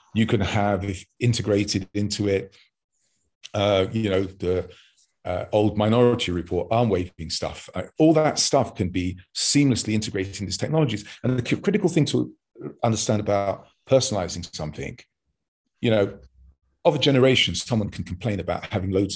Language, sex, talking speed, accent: English, male, 140 wpm, British